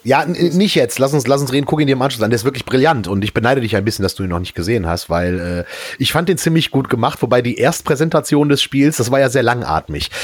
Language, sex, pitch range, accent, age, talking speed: German, male, 100-135 Hz, German, 30-49, 295 wpm